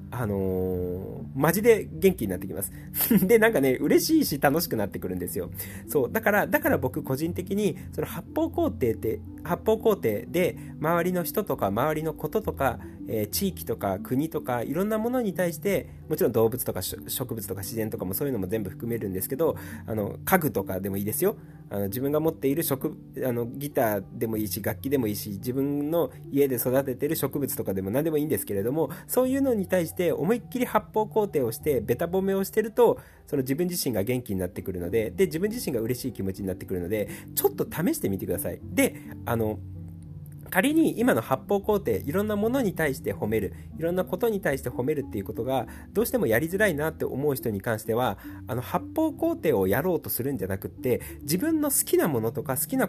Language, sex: Japanese, male